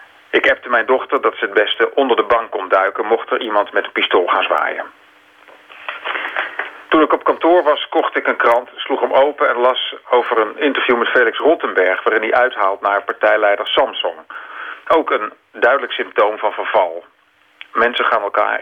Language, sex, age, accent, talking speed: Dutch, male, 40-59, Dutch, 180 wpm